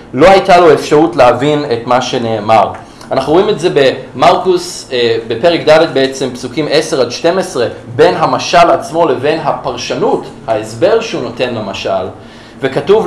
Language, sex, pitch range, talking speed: Hebrew, male, 130-180 Hz, 140 wpm